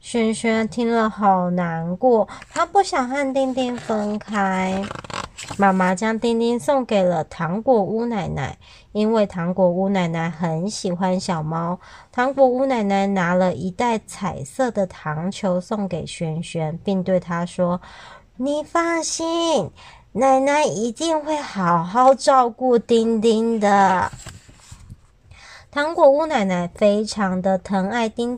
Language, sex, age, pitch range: Chinese, male, 30-49, 185-255 Hz